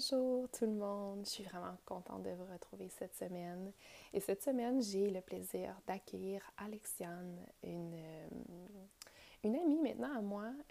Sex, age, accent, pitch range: female, 20-39, Canadian, 175-205 Hz